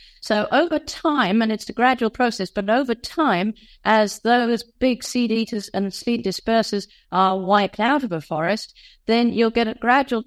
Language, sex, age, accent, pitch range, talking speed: English, female, 50-69, British, 190-240 Hz, 175 wpm